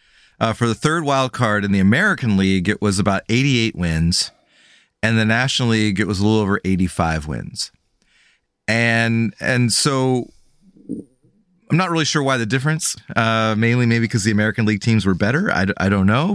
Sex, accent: male, American